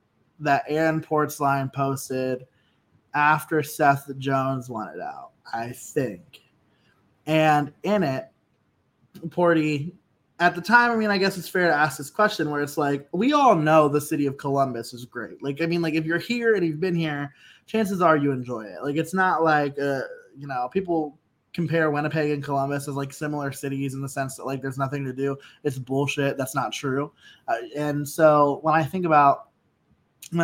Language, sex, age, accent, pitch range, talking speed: English, male, 20-39, American, 140-165 Hz, 185 wpm